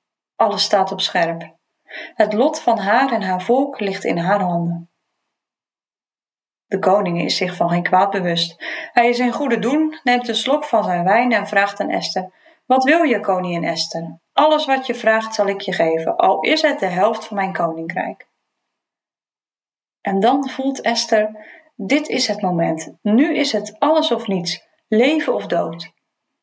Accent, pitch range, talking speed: Dutch, 195-265 Hz, 175 wpm